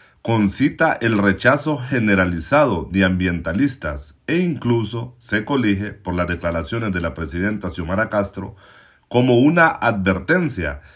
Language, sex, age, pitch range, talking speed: Spanish, male, 40-59, 95-130 Hz, 115 wpm